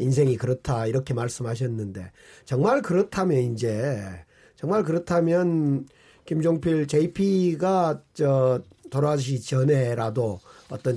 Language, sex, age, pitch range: Korean, male, 40-59, 130-190 Hz